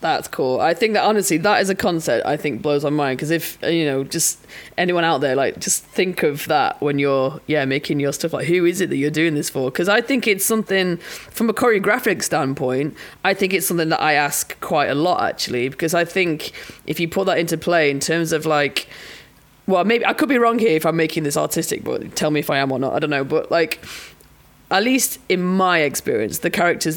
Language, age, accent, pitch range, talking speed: English, 20-39, British, 150-180 Hz, 240 wpm